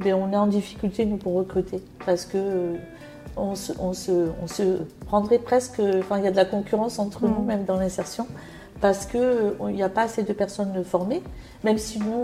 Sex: female